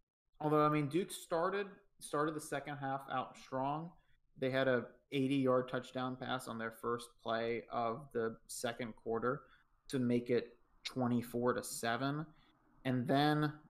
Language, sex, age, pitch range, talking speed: English, male, 30-49, 120-145 Hz, 145 wpm